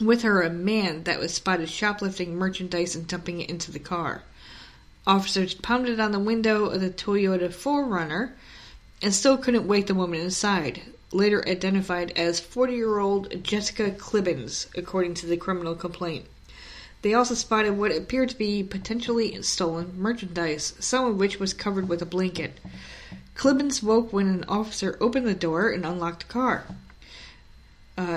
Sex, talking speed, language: female, 155 wpm, English